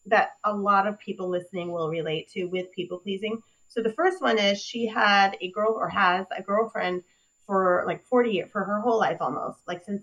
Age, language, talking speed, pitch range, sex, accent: 30-49, English, 215 wpm, 180-225 Hz, female, American